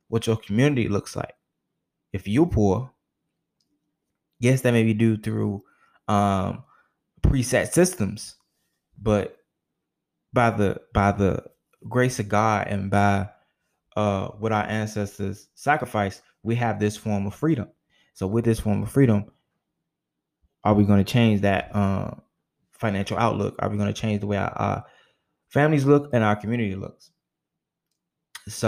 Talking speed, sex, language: 140 wpm, male, English